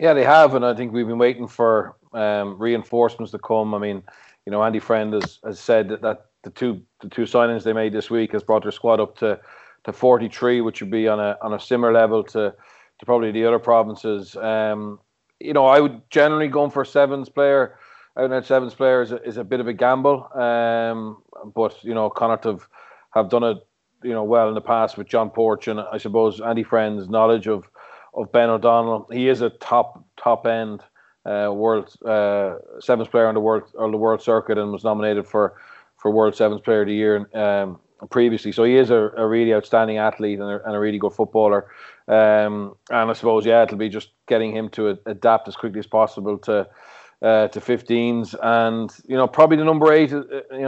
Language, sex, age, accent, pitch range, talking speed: English, male, 30-49, Irish, 110-120 Hz, 220 wpm